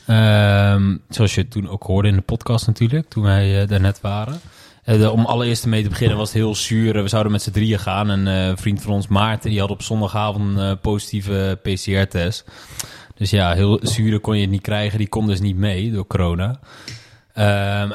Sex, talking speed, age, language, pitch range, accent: male, 215 wpm, 20-39, Dutch, 100-115 Hz, Dutch